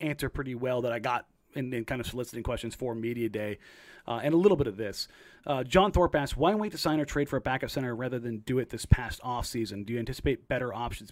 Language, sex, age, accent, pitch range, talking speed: English, male, 30-49, American, 120-155 Hz, 260 wpm